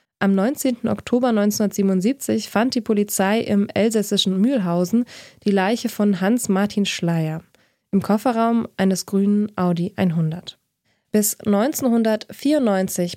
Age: 20-39